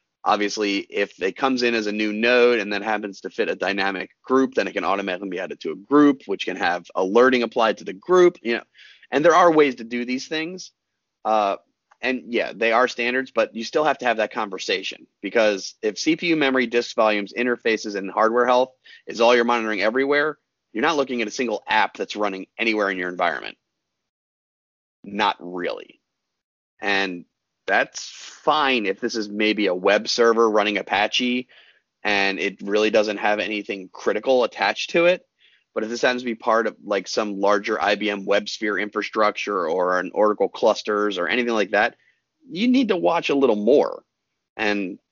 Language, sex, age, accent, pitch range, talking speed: English, male, 30-49, American, 105-130 Hz, 185 wpm